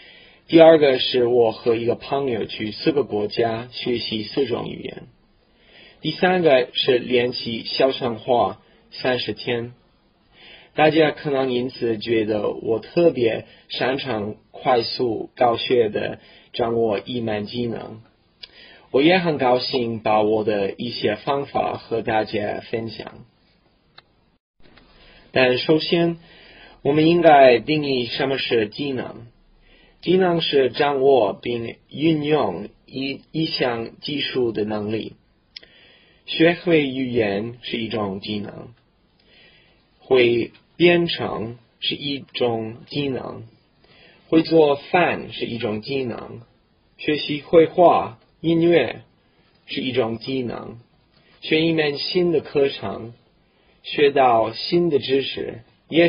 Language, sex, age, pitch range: Chinese, male, 20-39, 115-155 Hz